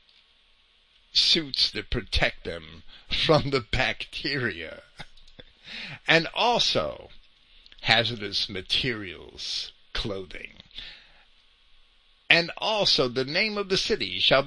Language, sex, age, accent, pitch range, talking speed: English, male, 50-69, American, 100-165 Hz, 85 wpm